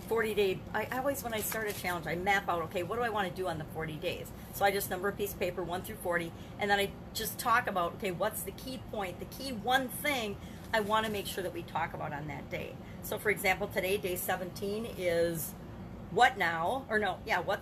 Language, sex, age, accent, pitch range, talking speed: English, female, 40-59, American, 180-225 Hz, 250 wpm